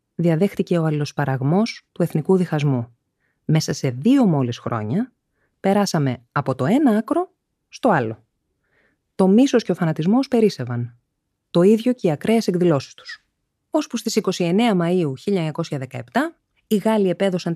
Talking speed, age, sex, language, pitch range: 135 wpm, 20-39, female, Greek, 135-220 Hz